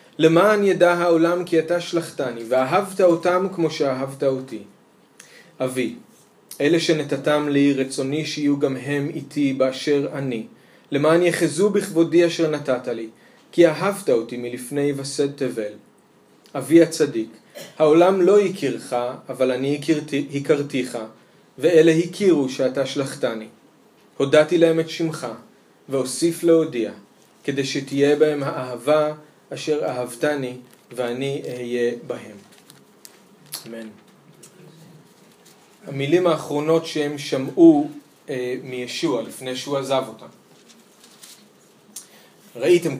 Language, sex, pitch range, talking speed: Hebrew, male, 130-165 Hz, 100 wpm